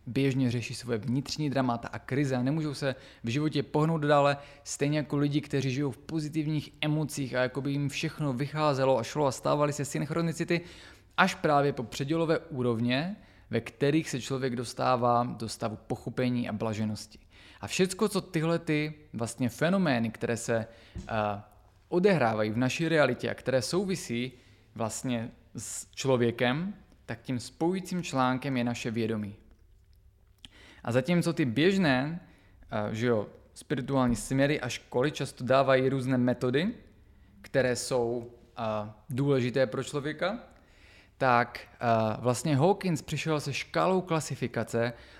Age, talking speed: 20-39, 135 wpm